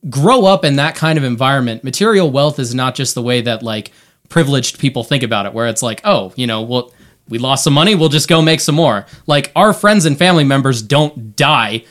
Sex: male